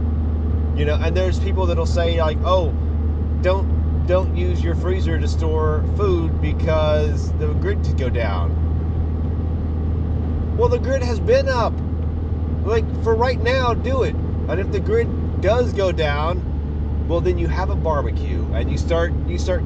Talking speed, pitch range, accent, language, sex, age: 160 wpm, 65-80 Hz, American, English, male, 30-49